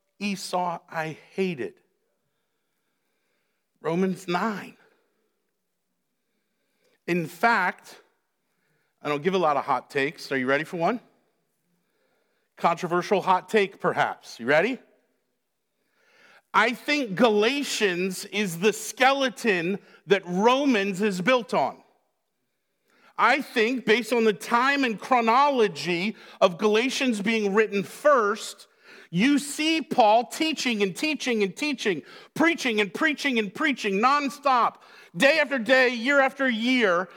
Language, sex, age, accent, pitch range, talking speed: English, male, 50-69, American, 190-260 Hz, 115 wpm